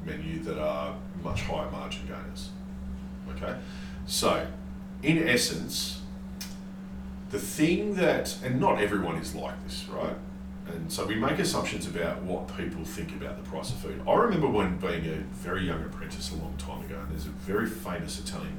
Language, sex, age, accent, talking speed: English, male, 40-59, Australian, 170 wpm